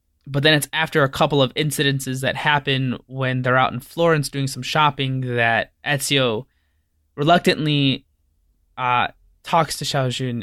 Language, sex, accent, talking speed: English, male, American, 145 wpm